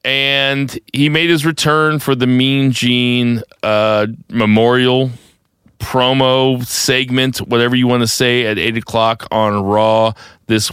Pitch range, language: 100-130 Hz, English